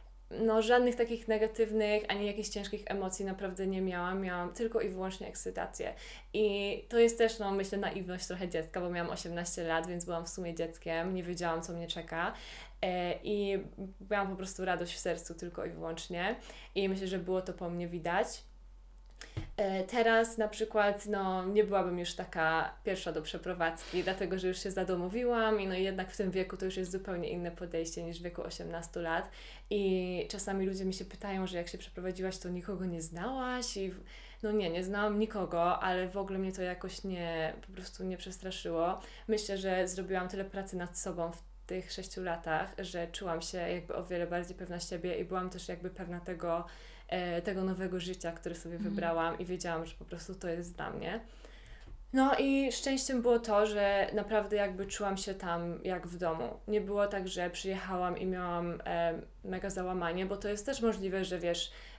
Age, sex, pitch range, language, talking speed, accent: 20-39, female, 175-200 Hz, Polish, 185 wpm, native